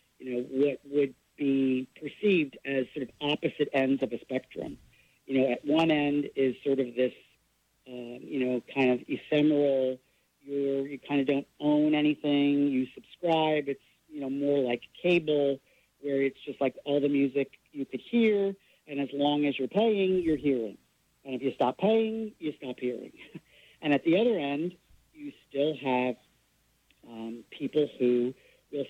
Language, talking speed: English, 170 wpm